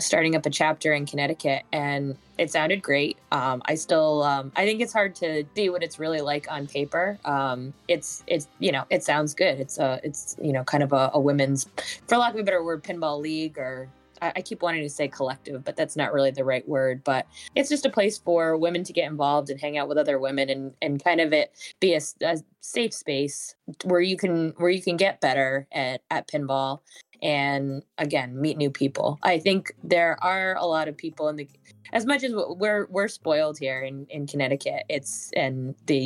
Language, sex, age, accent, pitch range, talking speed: English, female, 20-39, American, 140-175 Hz, 220 wpm